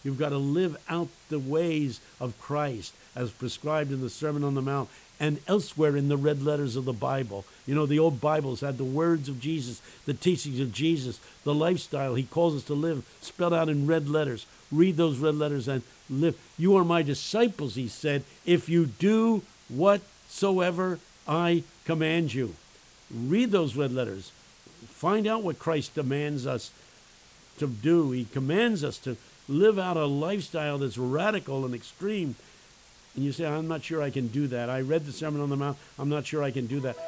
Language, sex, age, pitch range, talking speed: English, male, 60-79, 140-180 Hz, 195 wpm